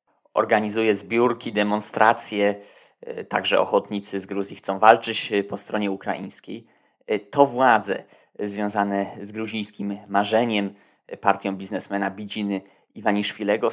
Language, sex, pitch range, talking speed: Polish, male, 100-110 Hz, 95 wpm